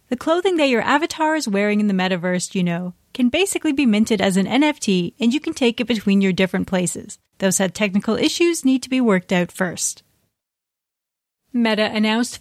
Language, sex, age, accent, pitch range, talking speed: English, female, 30-49, American, 195-260 Hz, 195 wpm